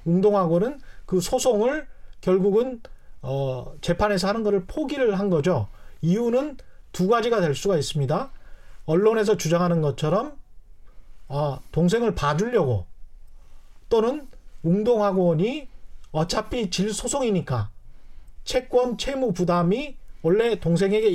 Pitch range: 160-230 Hz